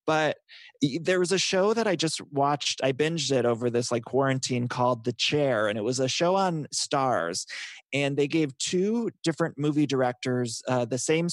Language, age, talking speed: English, 20-39, 190 wpm